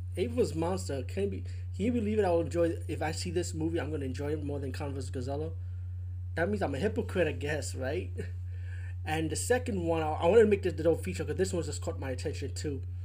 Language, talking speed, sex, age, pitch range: English, 255 wpm, male, 20-39, 85-95 Hz